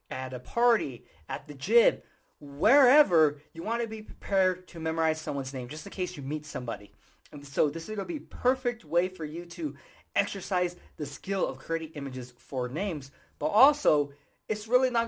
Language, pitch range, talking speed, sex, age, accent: English, 145-200 Hz, 180 wpm, male, 20-39, American